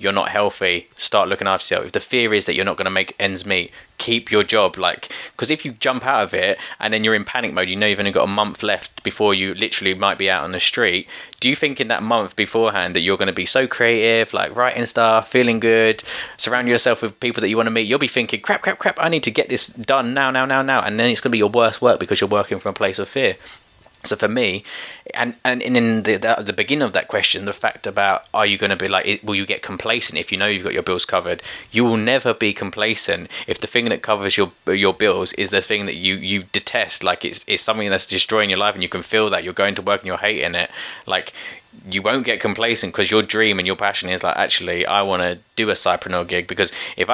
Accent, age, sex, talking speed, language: British, 20-39, male, 270 wpm, English